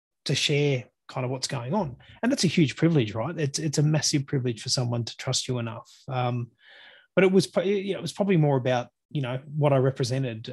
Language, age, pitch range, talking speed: English, 30-49, 125-155 Hz, 230 wpm